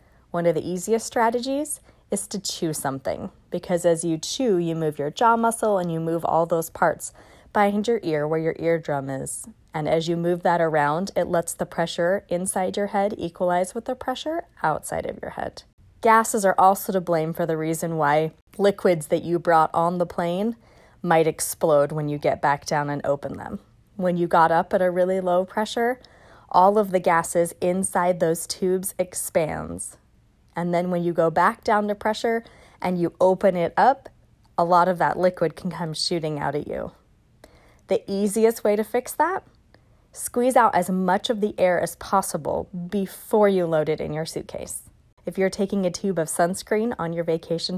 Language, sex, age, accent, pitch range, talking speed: English, female, 20-39, American, 165-200 Hz, 190 wpm